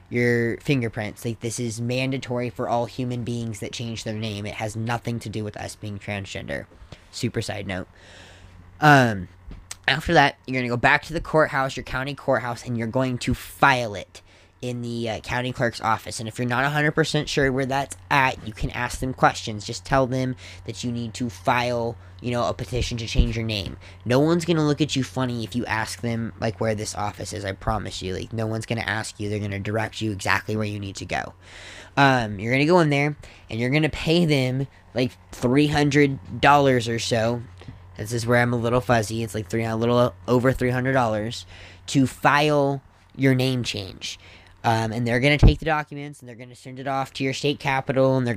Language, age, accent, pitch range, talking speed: English, 10-29, American, 105-135 Hz, 220 wpm